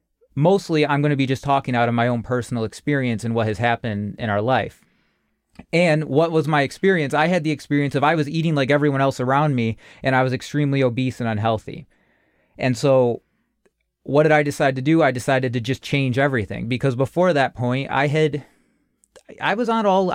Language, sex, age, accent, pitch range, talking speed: English, male, 30-49, American, 115-145 Hz, 205 wpm